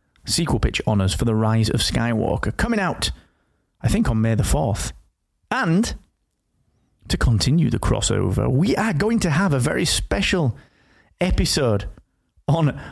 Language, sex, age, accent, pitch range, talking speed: English, male, 30-49, British, 115-150 Hz, 145 wpm